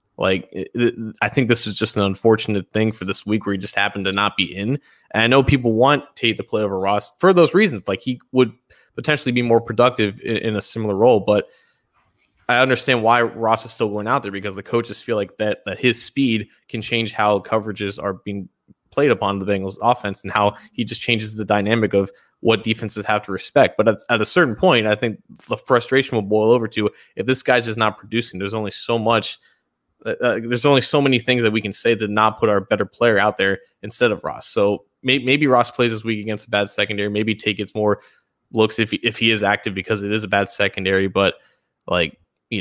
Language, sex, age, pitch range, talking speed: English, male, 20-39, 100-120 Hz, 230 wpm